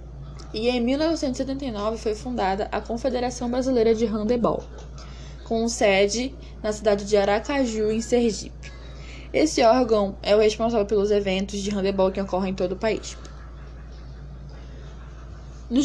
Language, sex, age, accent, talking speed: Portuguese, female, 10-29, Brazilian, 130 wpm